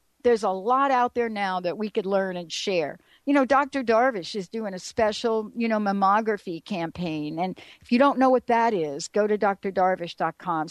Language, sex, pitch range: English, female, 195-255 Hz